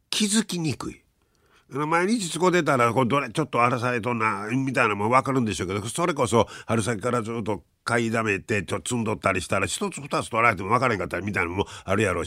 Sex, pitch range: male, 100-135 Hz